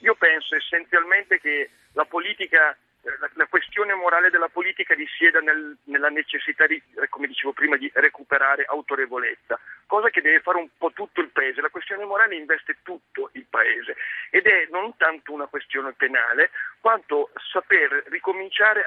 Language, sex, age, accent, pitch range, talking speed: Italian, male, 50-69, native, 145-195 Hz, 150 wpm